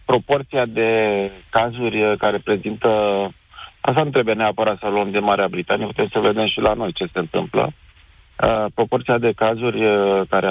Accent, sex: native, male